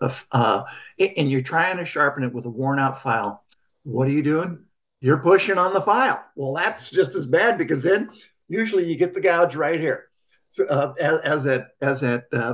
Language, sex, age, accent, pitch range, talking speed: English, male, 50-69, American, 125-165 Hz, 195 wpm